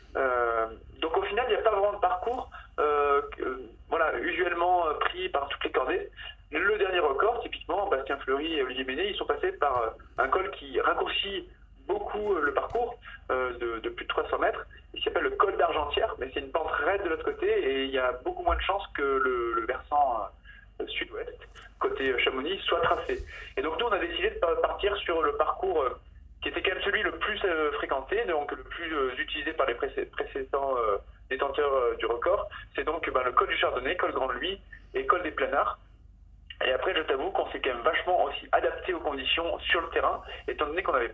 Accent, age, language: French, 40-59, French